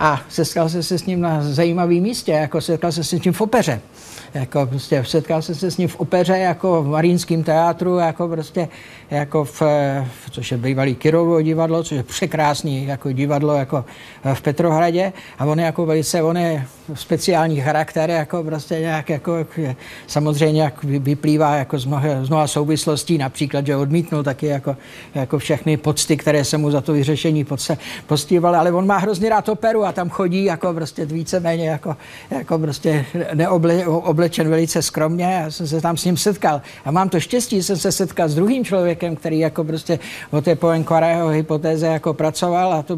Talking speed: 180 wpm